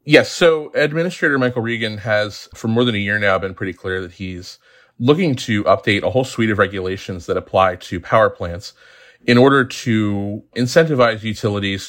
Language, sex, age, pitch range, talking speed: English, male, 30-49, 95-120 Hz, 175 wpm